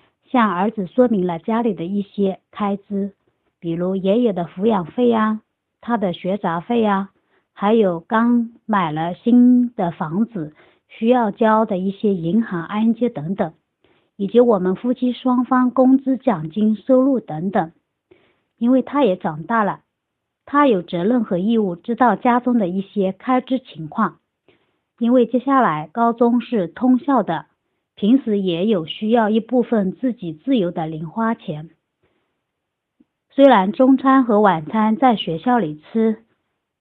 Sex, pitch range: male, 185-245 Hz